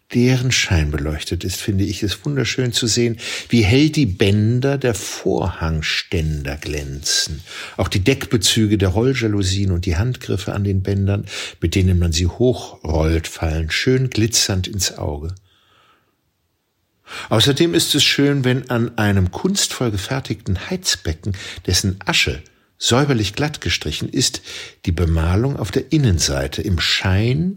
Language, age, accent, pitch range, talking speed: German, 60-79, German, 90-115 Hz, 135 wpm